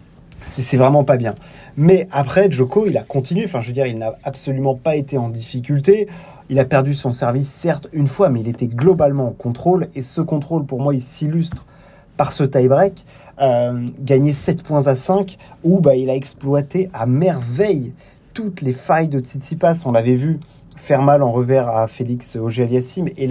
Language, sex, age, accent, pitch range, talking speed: French, male, 30-49, French, 130-150 Hz, 190 wpm